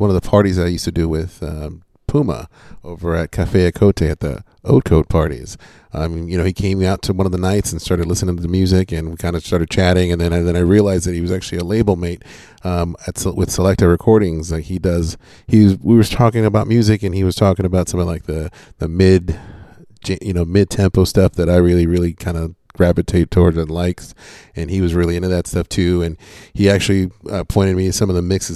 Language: English